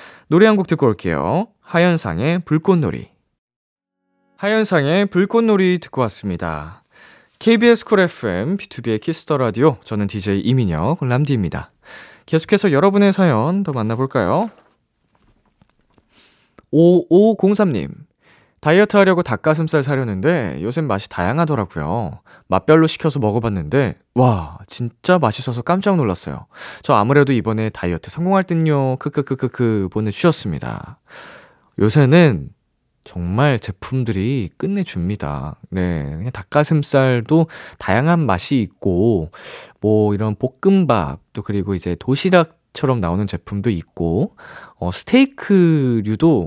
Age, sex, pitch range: 20-39, male, 105-165 Hz